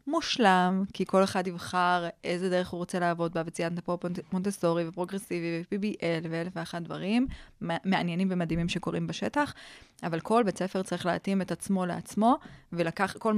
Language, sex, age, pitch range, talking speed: Hebrew, female, 20-39, 170-200 Hz, 155 wpm